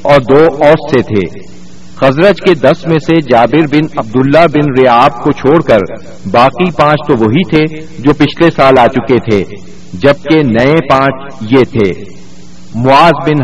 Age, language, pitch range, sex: 50-69, Urdu, 125-160 Hz, male